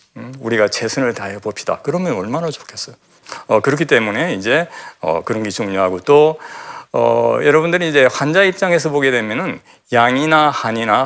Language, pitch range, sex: Korean, 110-145 Hz, male